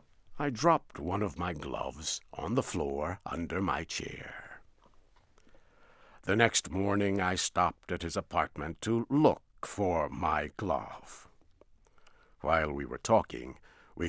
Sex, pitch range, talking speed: male, 80-100 Hz, 130 wpm